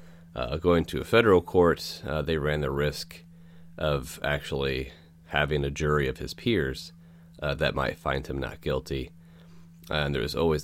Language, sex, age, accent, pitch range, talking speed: English, male, 30-49, American, 80-85 Hz, 175 wpm